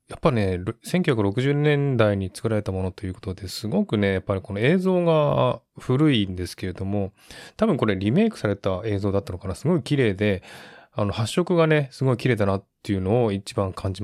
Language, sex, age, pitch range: Japanese, male, 20-39, 100-125 Hz